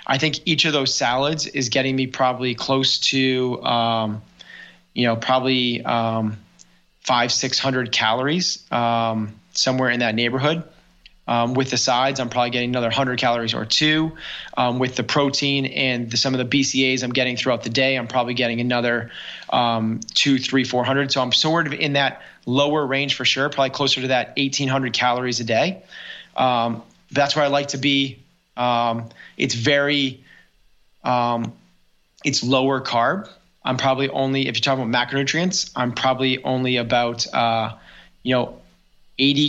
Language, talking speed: English, 165 wpm